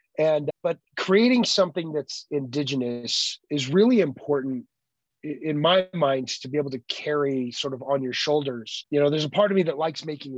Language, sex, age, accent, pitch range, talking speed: English, male, 30-49, American, 125-155 Hz, 185 wpm